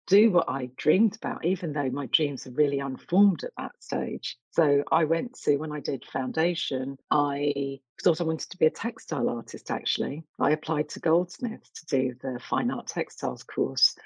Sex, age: female, 40-59